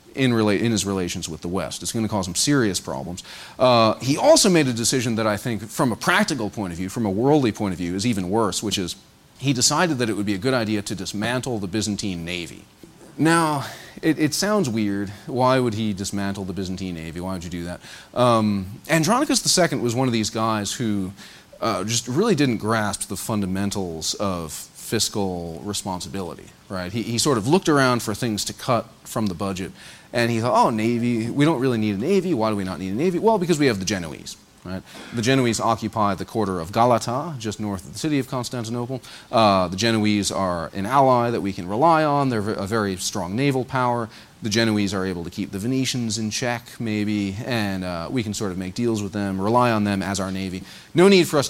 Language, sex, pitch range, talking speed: English, male, 95-125 Hz, 220 wpm